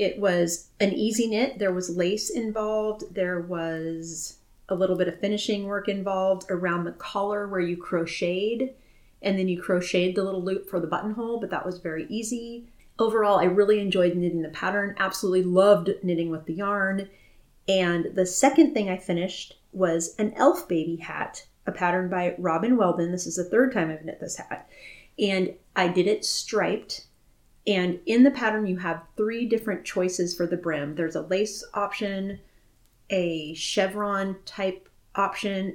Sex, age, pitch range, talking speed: female, 30-49, 170-200 Hz, 170 wpm